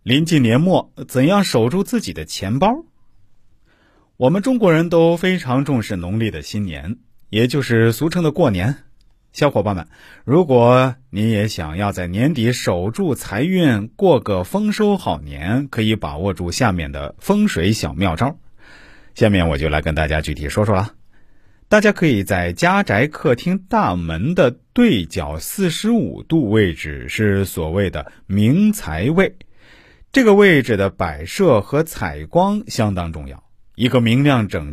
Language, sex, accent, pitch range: Chinese, male, native, 95-145 Hz